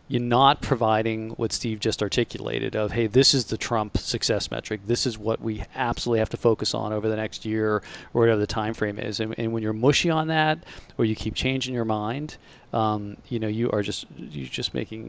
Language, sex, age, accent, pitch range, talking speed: English, male, 40-59, American, 110-150 Hz, 225 wpm